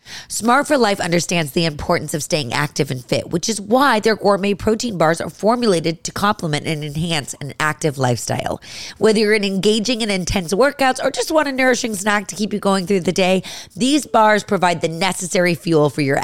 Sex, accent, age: female, American, 30-49